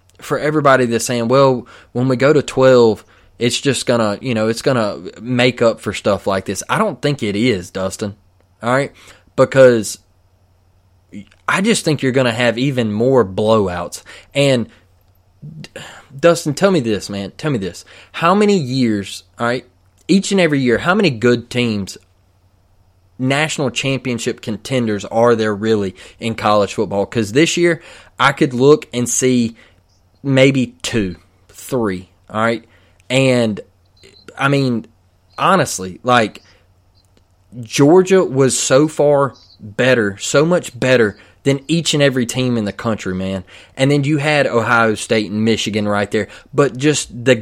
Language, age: English, 20-39